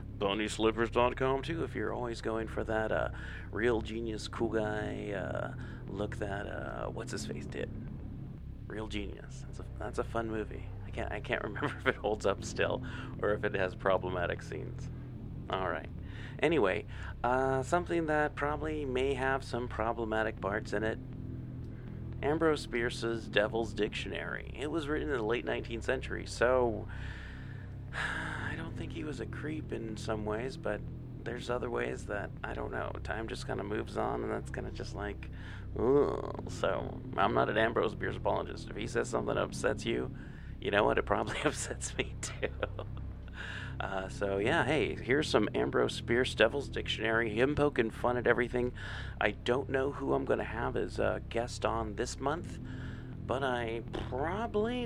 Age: 30-49